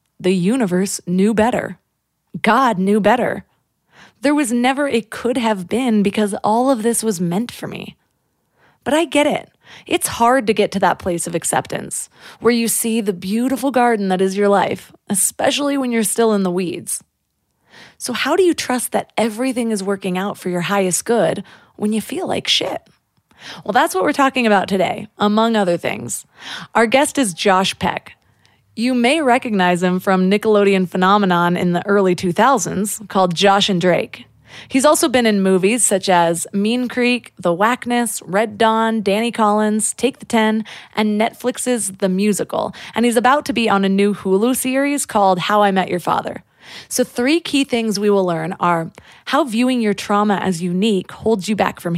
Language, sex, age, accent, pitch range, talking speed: English, female, 20-39, American, 190-240 Hz, 180 wpm